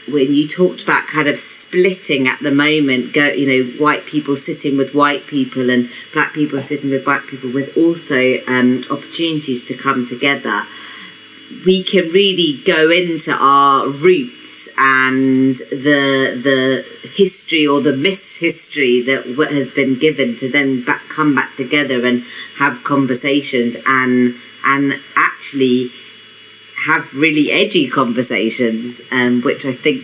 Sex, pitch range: female, 130-150 Hz